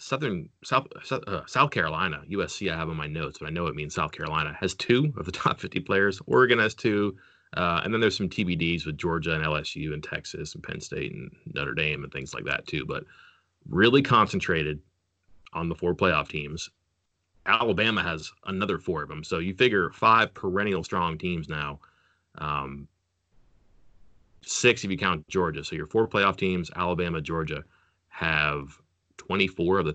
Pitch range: 80-95 Hz